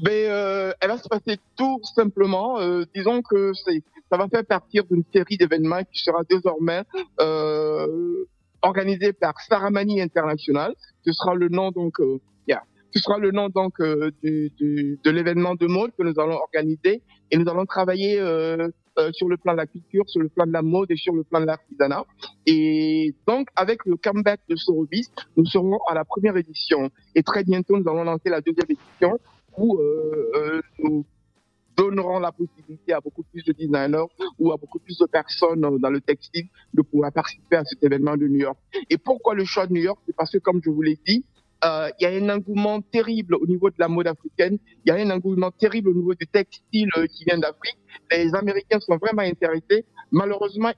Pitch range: 160-205 Hz